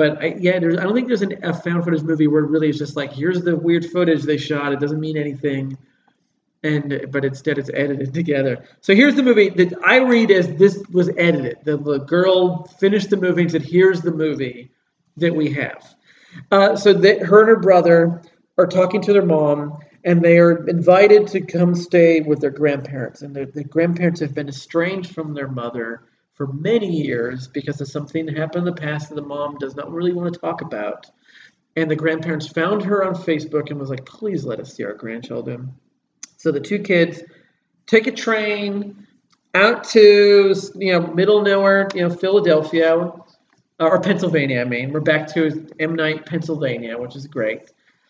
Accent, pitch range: American, 150-185 Hz